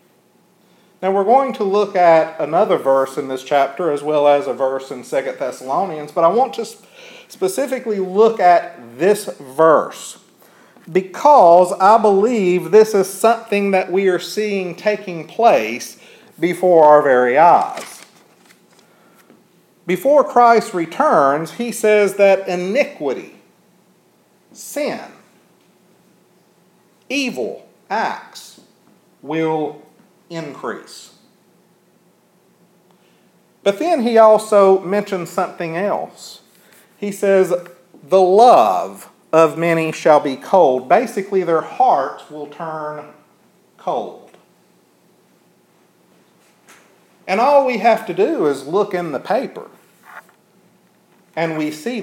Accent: American